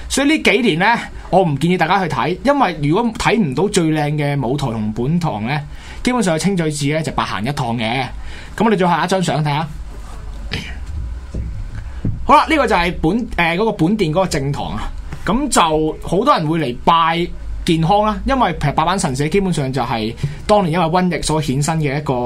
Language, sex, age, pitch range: Chinese, male, 20-39, 125-185 Hz